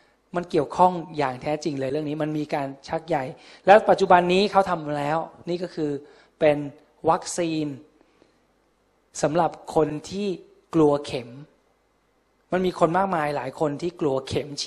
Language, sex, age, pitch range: Thai, male, 20-39, 150-180 Hz